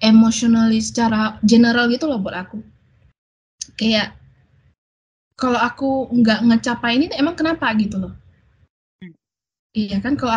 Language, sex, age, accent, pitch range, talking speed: English, female, 20-39, Indonesian, 210-255 Hz, 115 wpm